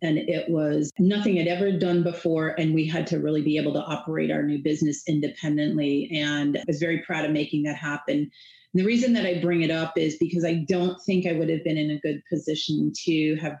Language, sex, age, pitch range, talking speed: English, female, 30-49, 155-175 Hz, 230 wpm